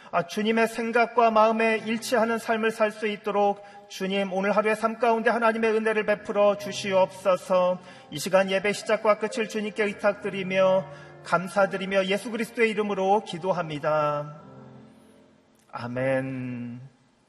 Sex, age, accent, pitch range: male, 40-59, native, 125-190 Hz